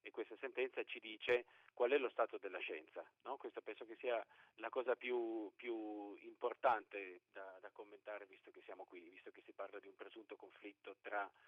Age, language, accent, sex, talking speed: 40-59, Italian, native, male, 195 wpm